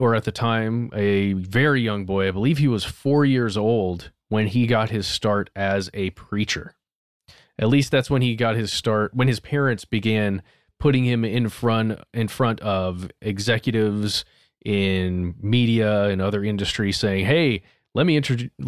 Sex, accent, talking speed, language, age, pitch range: male, American, 170 wpm, English, 20-39, 100-125 Hz